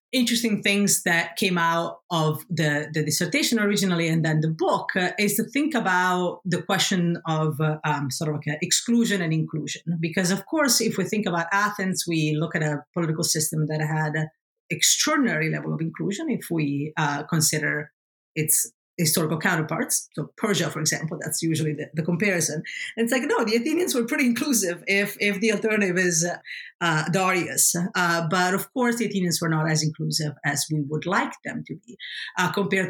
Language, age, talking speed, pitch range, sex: English, 40-59, 190 wpm, 155-205 Hz, female